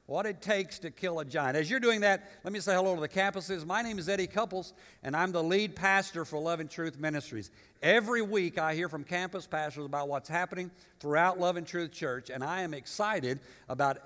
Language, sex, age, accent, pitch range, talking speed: English, male, 60-79, American, 145-195 Hz, 225 wpm